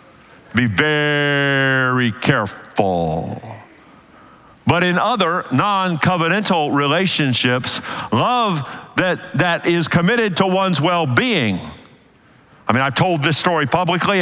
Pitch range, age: 125-165 Hz, 50-69